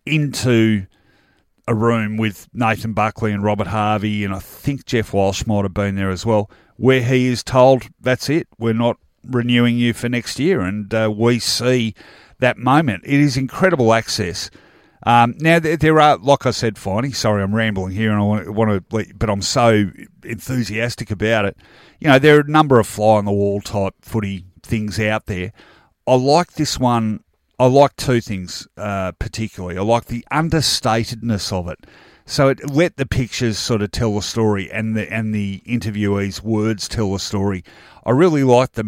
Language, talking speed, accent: English, 180 wpm, Australian